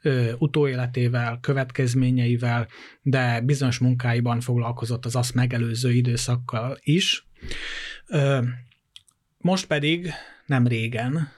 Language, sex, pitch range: Hungarian, male, 120-140 Hz